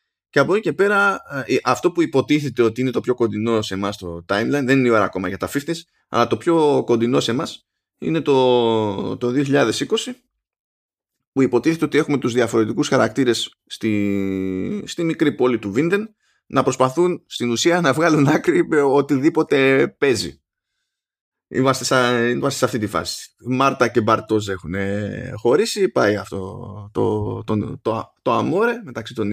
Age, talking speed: 20-39, 170 wpm